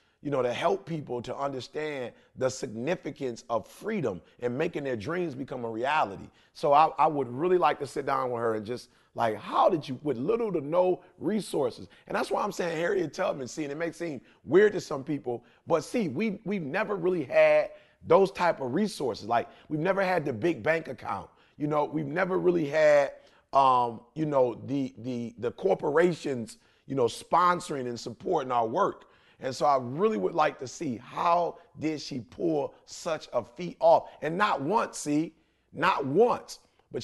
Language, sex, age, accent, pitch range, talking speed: English, male, 30-49, American, 120-170 Hz, 190 wpm